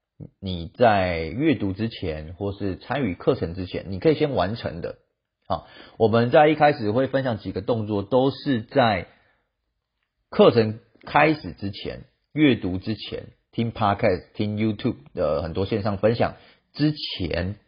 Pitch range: 95-120 Hz